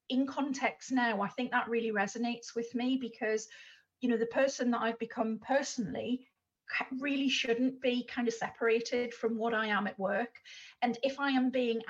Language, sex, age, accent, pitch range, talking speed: English, female, 40-59, British, 220-245 Hz, 180 wpm